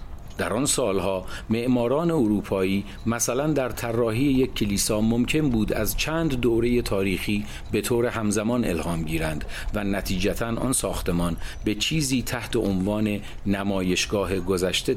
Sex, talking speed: male, 125 wpm